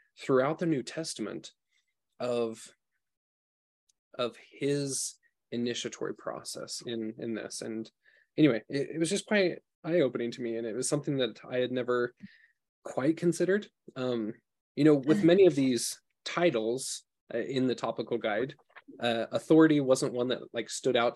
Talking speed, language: 145 wpm, English